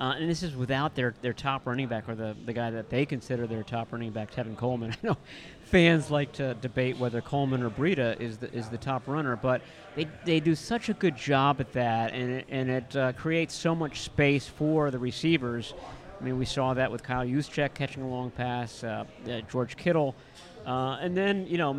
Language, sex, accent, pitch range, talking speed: English, male, American, 120-145 Hz, 225 wpm